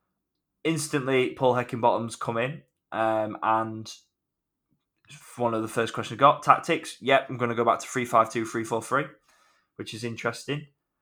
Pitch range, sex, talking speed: 110-135 Hz, male, 145 wpm